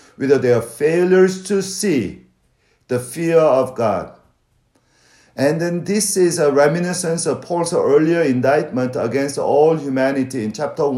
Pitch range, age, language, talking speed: 130-170 Hz, 50-69, English, 130 wpm